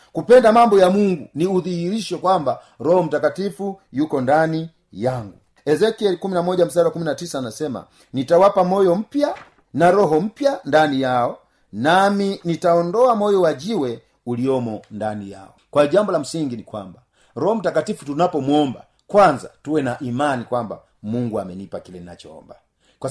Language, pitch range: Swahili, 130-185 Hz